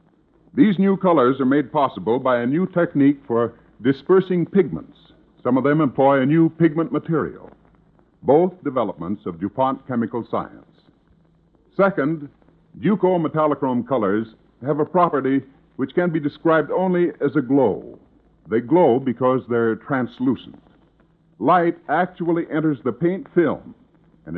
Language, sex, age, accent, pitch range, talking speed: English, female, 60-79, American, 120-165 Hz, 130 wpm